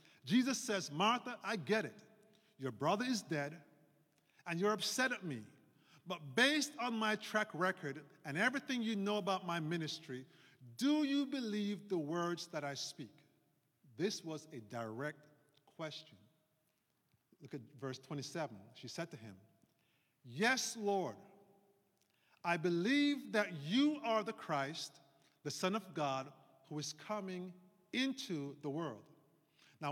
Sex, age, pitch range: male, 50-69, 145-210 Hz